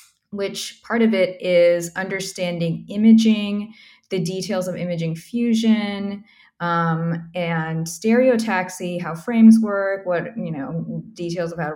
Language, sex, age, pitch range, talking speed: English, female, 20-39, 175-220 Hz, 120 wpm